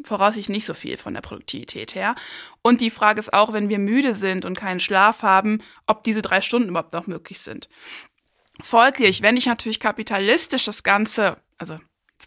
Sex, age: female, 20-39